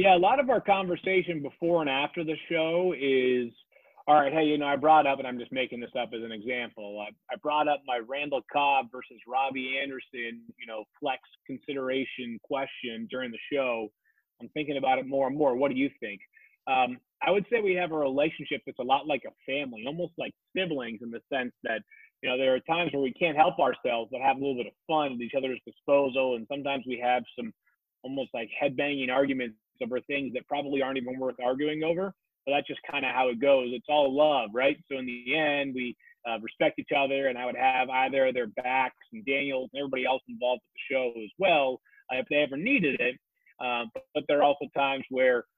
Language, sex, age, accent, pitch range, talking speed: English, male, 30-49, American, 125-150 Hz, 225 wpm